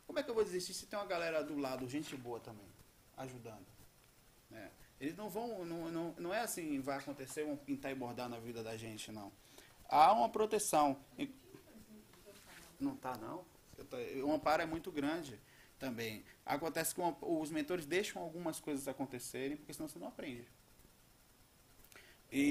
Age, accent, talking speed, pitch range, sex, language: 20-39, Brazilian, 165 wpm, 125-175 Hz, male, Portuguese